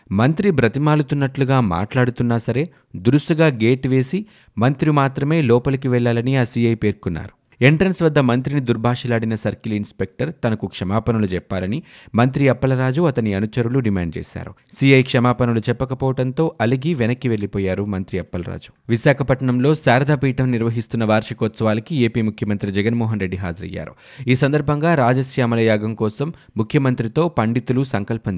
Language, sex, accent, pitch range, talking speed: Telugu, male, native, 110-135 Hz, 110 wpm